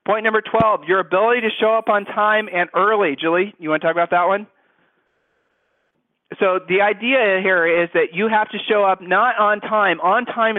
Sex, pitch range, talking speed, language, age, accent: male, 170-215 Hz, 205 wpm, English, 40-59, American